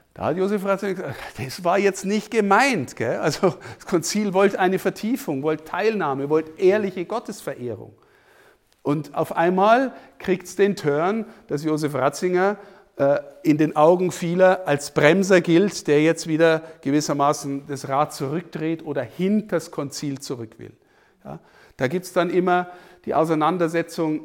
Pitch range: 135-180 Hz